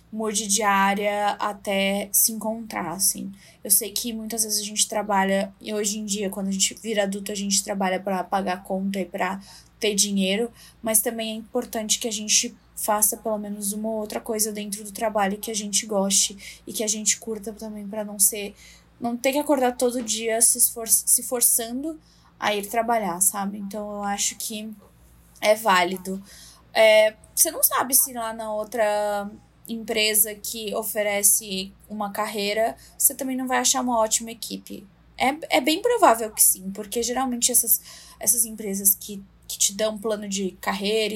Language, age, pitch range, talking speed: Portuguese, 10-29, 200-230 Hz, 175 wpm